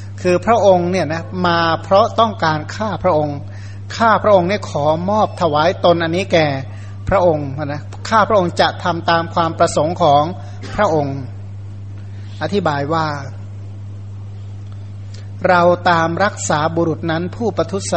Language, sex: Thai, male